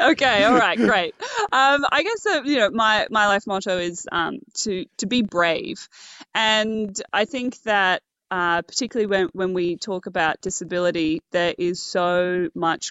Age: 20-39